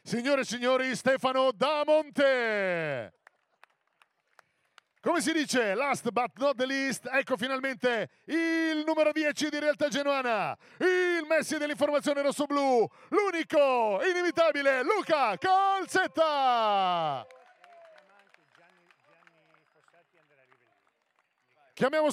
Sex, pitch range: male, 245-310 Hz